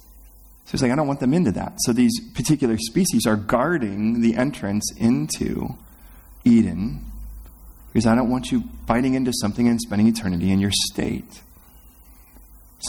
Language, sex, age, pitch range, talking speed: English, male, 30-49, 95-115 Hz, 160 wpm